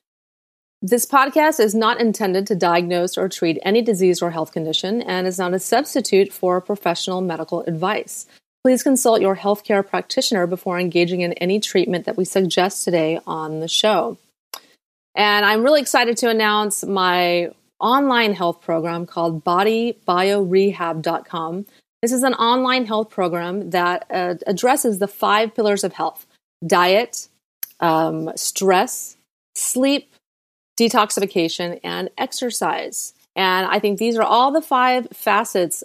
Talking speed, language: 135 wpm, English